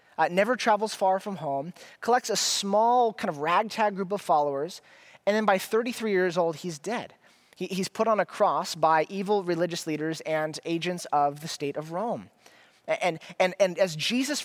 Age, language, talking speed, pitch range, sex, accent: 20-39, English, 185 wpm, 160-210 Hz, male, American